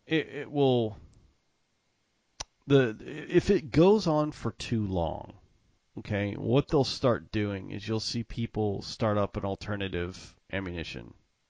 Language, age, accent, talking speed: English, 40-59, American, 130 wpm